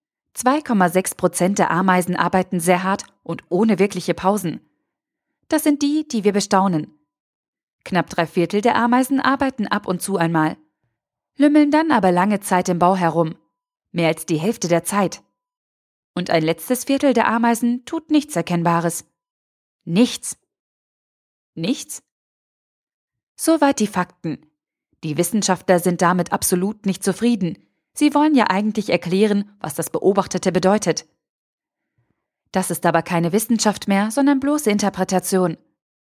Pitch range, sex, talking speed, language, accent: 175-235 Hz, female, 130 wpm, German, German